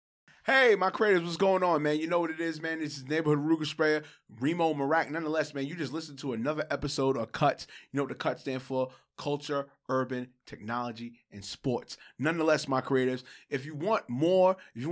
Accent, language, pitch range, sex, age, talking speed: American, English, 140-200 Hz, male, 20-39, 205 wpm